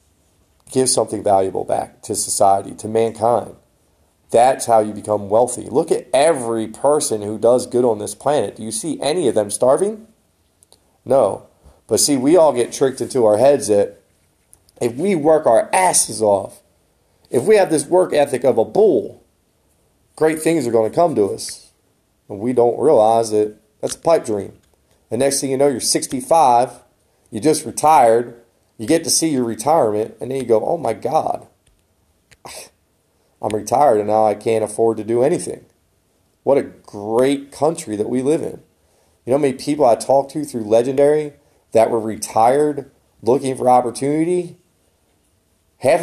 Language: English